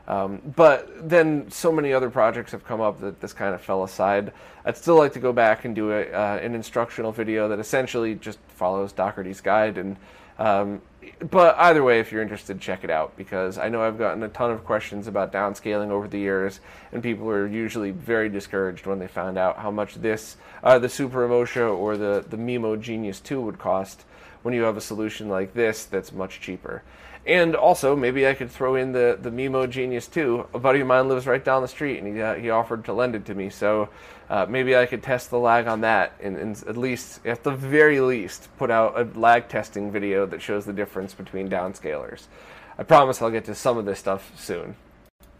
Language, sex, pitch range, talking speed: English, male, 100-130 Hz, 220 wpm